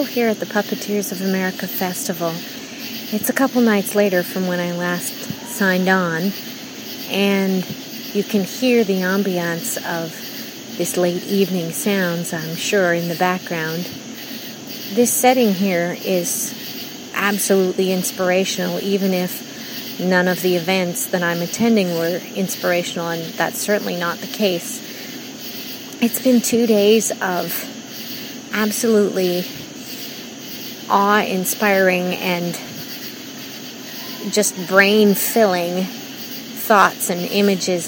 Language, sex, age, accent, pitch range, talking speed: English, female, 30-49, American, 185-245 Hz, 110 wpm